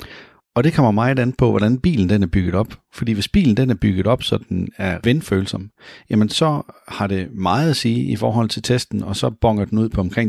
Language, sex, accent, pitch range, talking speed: Danish, male, native, 100-125 Hz, 240 wpm